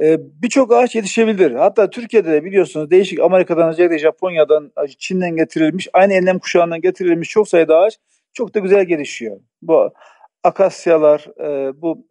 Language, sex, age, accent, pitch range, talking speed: Turkish, male, 50-69, native, 165-225 Hz, 135 wpm